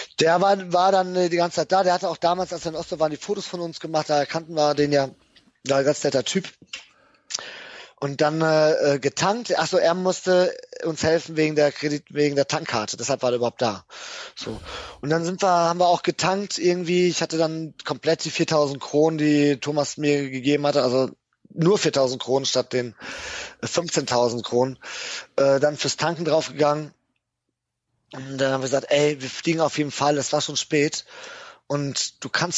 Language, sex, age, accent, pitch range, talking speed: German, male, 20-39, German, 135-170 Hz, 195 wpm